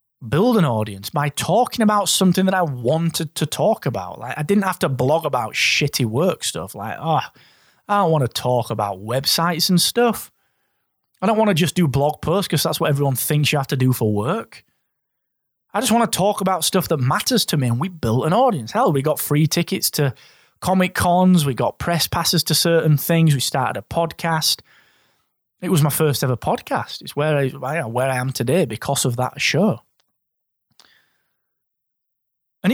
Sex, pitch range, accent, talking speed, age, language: male, 130-185 Hz, British, 190 wpm, 20-39, English